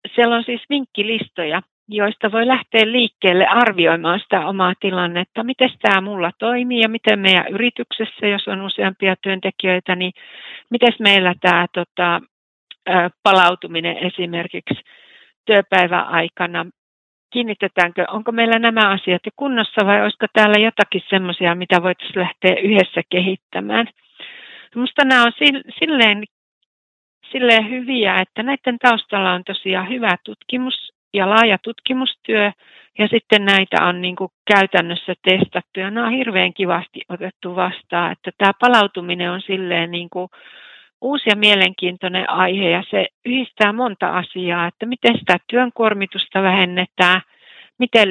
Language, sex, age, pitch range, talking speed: Finnish, female, 60-79, 180-225 Hz, 120 wpm